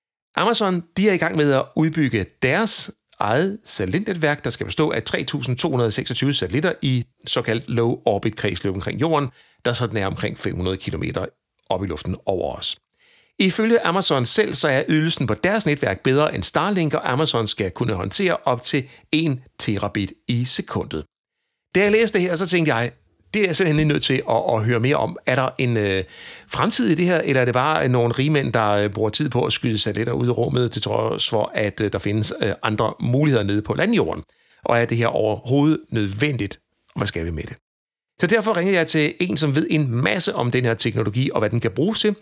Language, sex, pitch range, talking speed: Danish, male, 110-160 Hz, 210 wpm